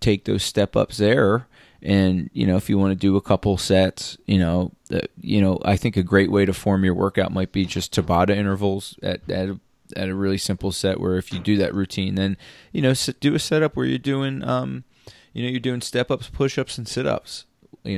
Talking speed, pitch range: 220 wpm, 95-115 Hz